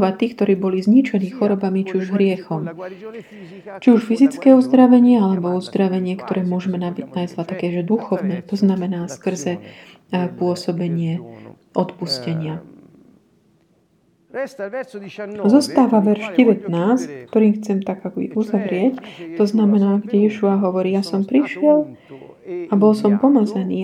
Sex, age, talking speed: female, 30-49, 120 wpm